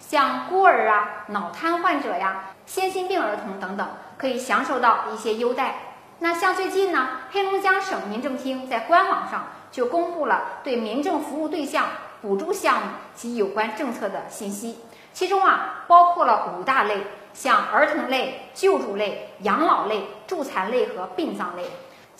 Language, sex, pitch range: Chinese, female, 210-345 Hz